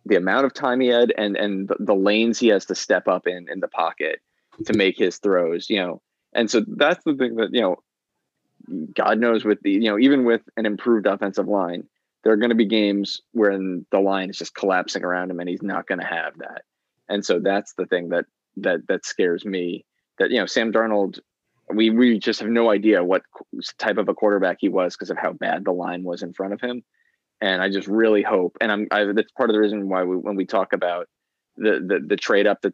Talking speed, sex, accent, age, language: 240 wpm, male, American, 20-39, English